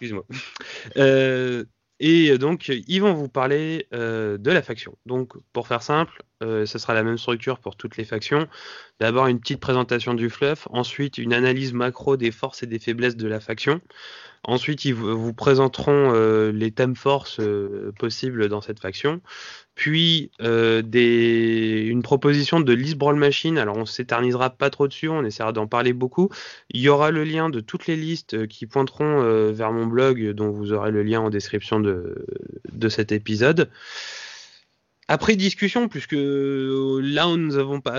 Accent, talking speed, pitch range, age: French, 175 wpm, 115-145 Hz, 20-39